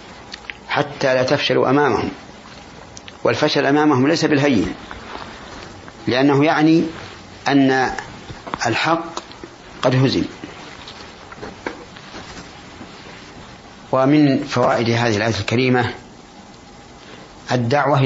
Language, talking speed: Arabic, 65 wpm